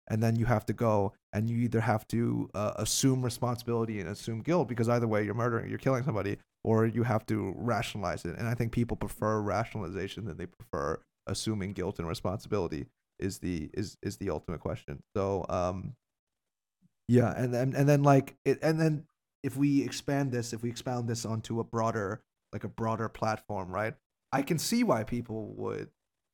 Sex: male